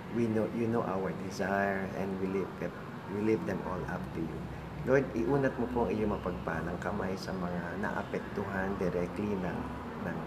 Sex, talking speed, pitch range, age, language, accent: male, 180 wpm, 95-110 Hz, 50-69, English, Filipino